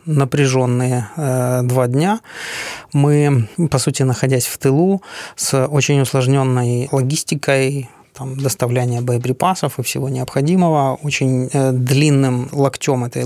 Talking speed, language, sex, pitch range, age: 110 wpm, Ukrainian, male, 125-150 Hz, 20-39